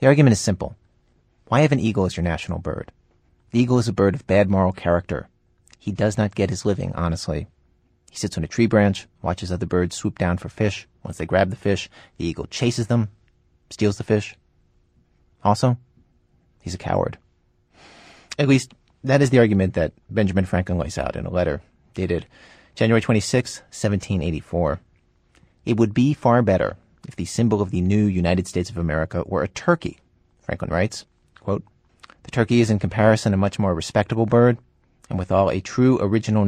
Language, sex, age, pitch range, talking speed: English, male, 30-49, 90-120 Hz, 185 wpm